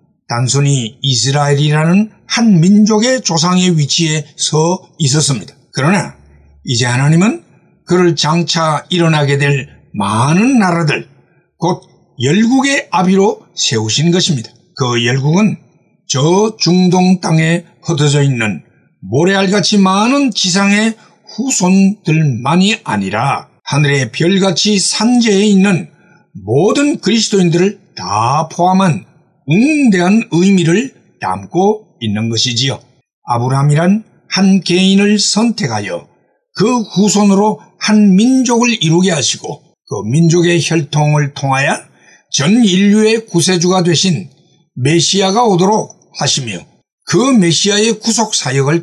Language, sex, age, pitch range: Korean, male, 60-79, 145-205 Hz